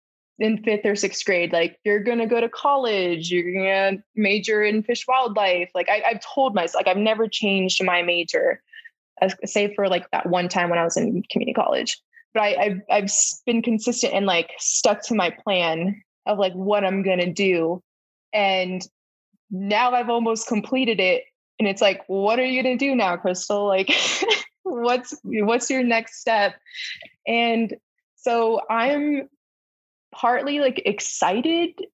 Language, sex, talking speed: English, female, 170 wpm